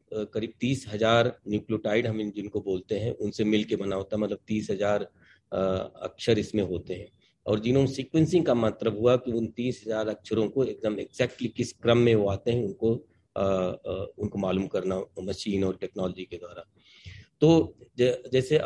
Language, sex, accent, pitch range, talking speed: Hindi, male, native, 100-125 Hz, 185 wpm